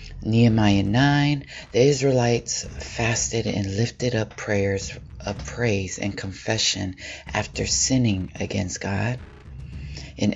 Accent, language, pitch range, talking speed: American, English, 100-110 Hz, 105 wpm